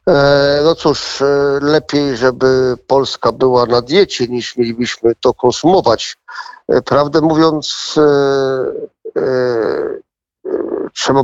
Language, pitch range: Polish, 120-140 Hz